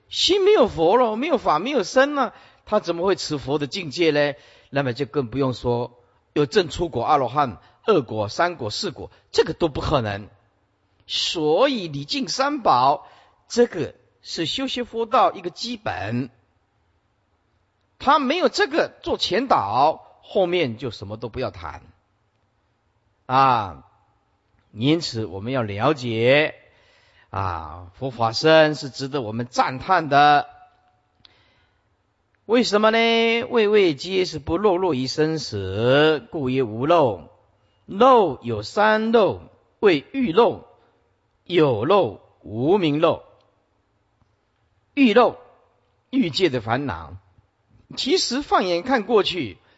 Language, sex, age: Chinese, male, 50-69